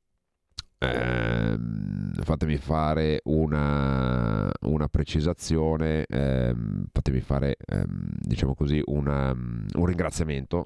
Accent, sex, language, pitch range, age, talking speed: native, male, Italian, 70-80 Hz, 30-49, 85 wpm